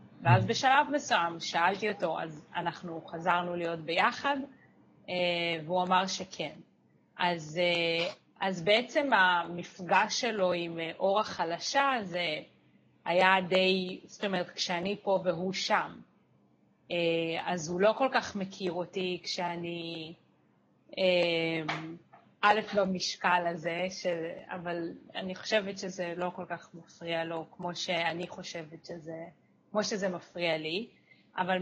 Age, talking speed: 20-39, 115 wpm